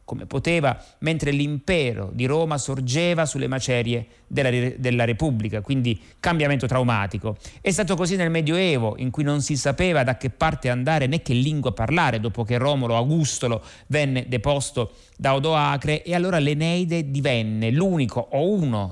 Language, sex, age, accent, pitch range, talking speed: Italian, male, 30-49, native, 115-150 Hz, 150 wpm